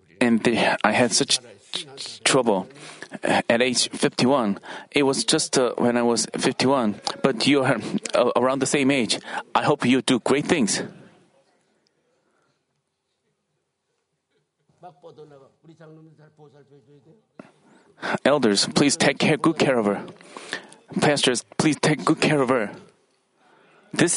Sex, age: male, 40-59